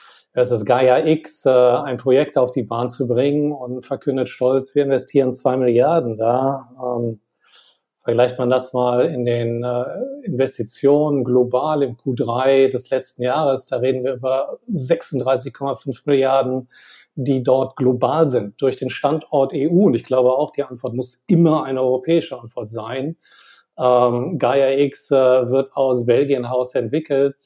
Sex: male